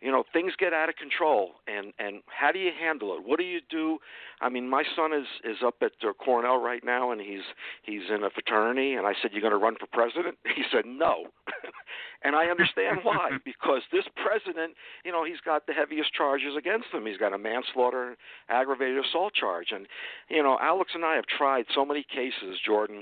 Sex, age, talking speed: male, 50-69, 215 wpm